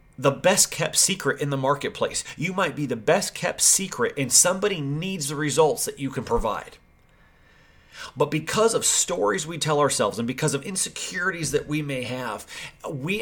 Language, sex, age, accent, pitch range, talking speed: English, male, 30-49, American, 130-155 Hz, 175 wpm